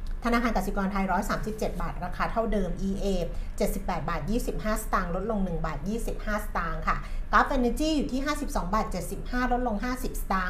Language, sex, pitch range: Thai, female, 195-250 Hz